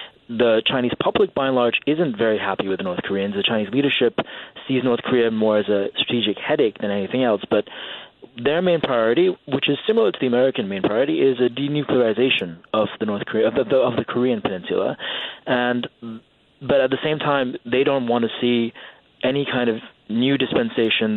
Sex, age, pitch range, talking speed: male, 20-39, 110-135 Hz, 195 wpm